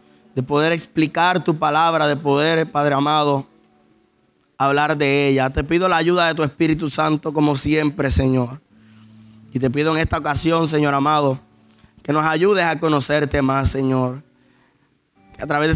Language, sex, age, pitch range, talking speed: Spanish, male, 20-39, 135-155 Hz, 160 wpm